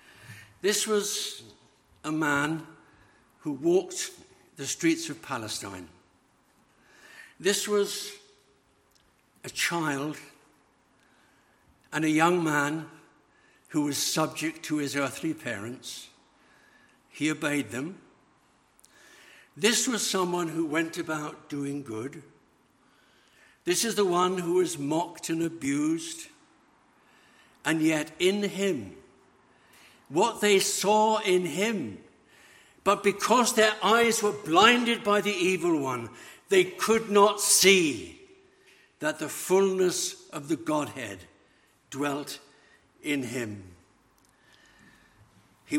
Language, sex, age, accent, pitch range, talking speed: English, male, 60-79, British, 150-225 Hz, 100 wpm